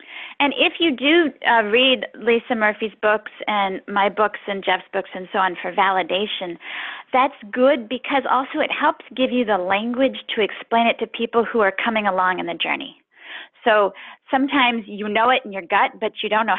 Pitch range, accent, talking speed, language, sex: 195-255 Hz, American, 195 wpm, English, female